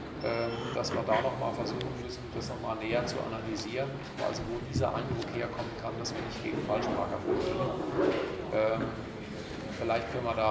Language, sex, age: German, male, 40-59